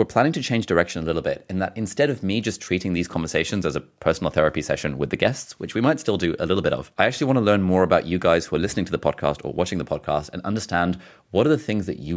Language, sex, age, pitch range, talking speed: English, male, 30-49, 80-100 Hz, 300 wpm